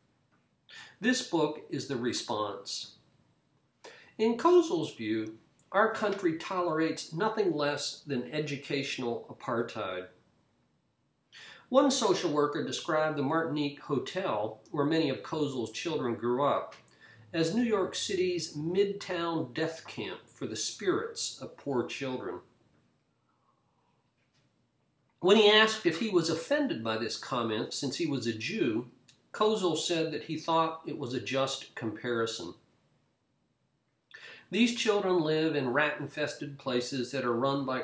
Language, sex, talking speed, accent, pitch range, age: English, male, 125 wpm, American, 135-180 Hz, 50-69